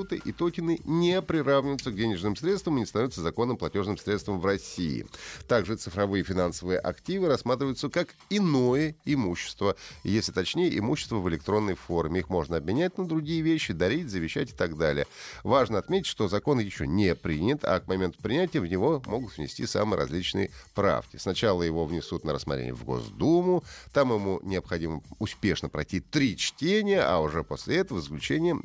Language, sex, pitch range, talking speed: Russian, male, 85-135 Hz, 160 wpm